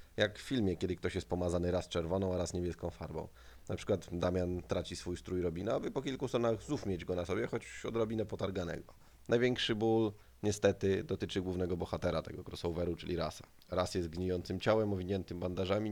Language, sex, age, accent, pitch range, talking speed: Polish, male, 20-39, native, 85-100 Hz, 180 wpm